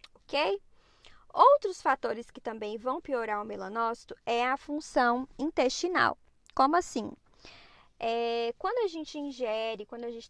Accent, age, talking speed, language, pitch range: Brazilian, 10-29, 120 wpm, Portuguese, 225-275 Hz